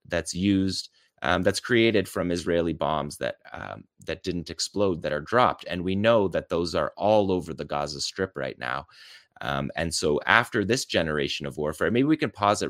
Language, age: English, 30-49